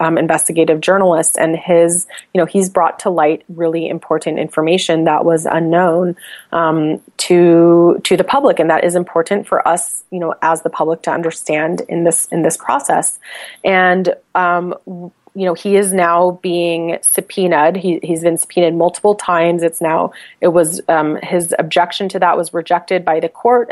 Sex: female